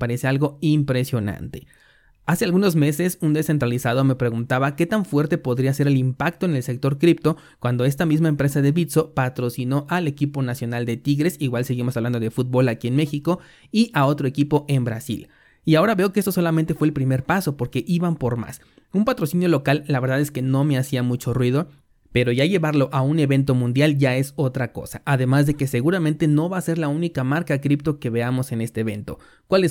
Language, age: Spanish, 30-49